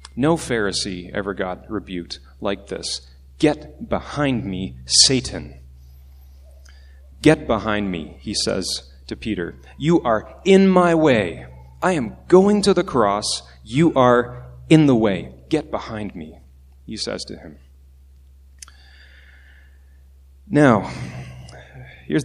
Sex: male